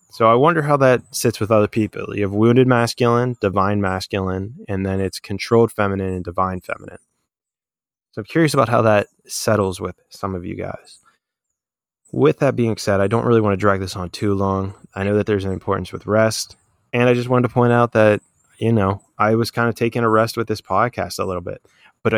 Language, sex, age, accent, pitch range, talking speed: English, male, 20-39, American, 100-120 Hz, 220 wpm